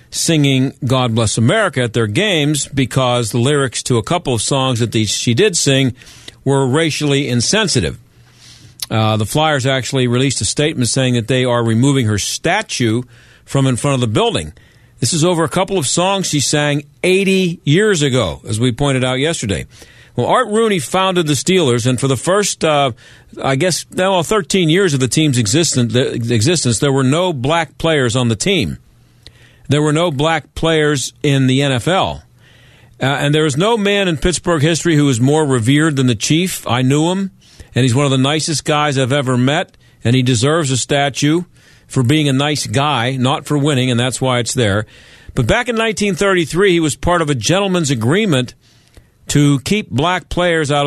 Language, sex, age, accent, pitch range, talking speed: English, male, 50-69, American, 125-160 Hz, 190 wpm